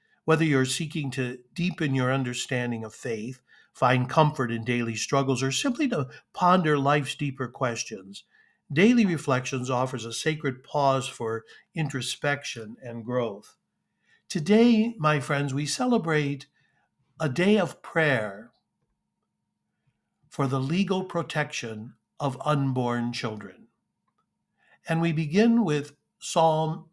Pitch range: 125-165 Hz